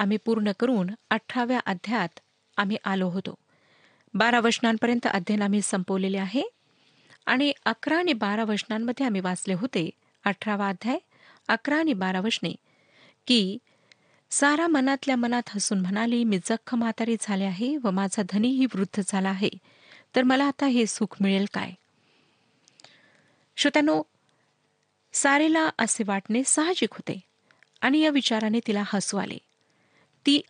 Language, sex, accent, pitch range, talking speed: Marathi, female, native, 200-255 Hz, 130 wpm